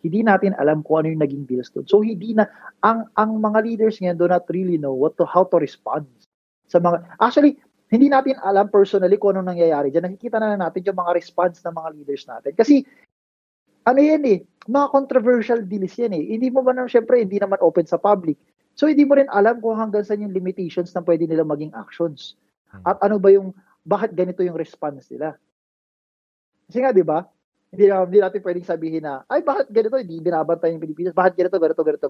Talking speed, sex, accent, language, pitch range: 210 wpm, male, native, Filipino, 160-220 Hz